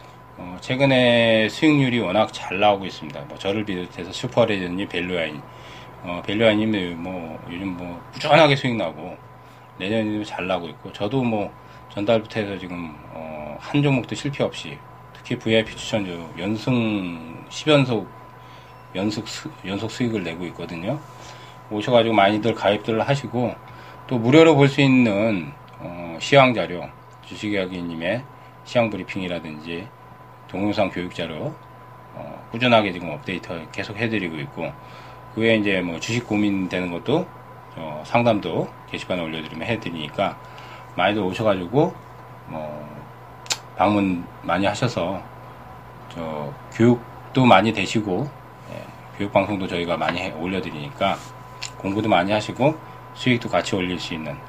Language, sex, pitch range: Korean, male, 90-120 Hz